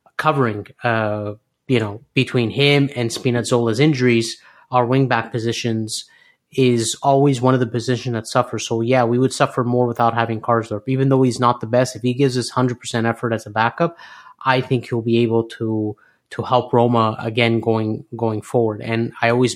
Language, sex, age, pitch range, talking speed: English, male, 30-49, 115-130 Hz, 190 wpm